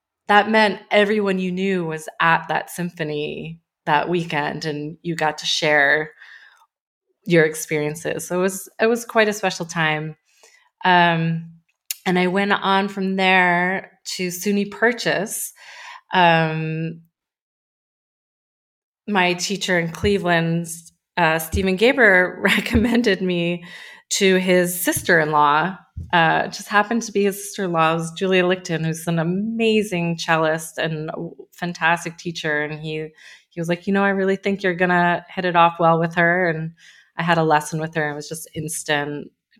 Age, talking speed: 20-39, 150 wpm